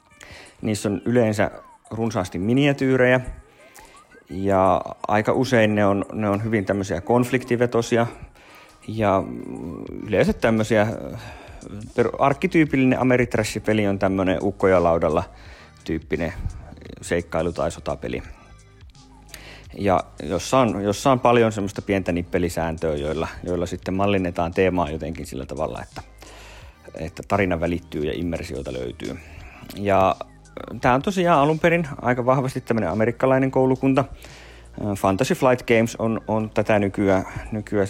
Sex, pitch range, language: male, 90-120 Hz, Finnish